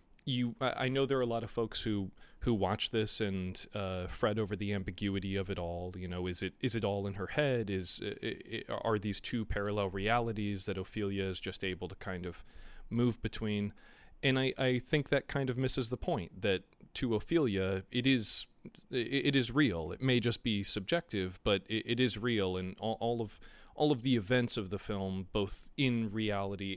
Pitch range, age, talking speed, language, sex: 95-115 Hz, 30-49, 210 wpm, English, male